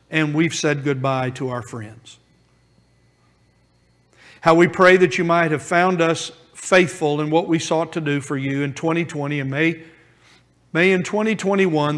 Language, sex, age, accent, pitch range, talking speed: English, male, 50-69, American, 130-175 Hz, 160 wpm